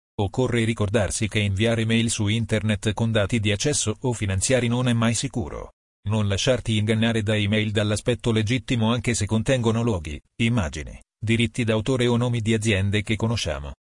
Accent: native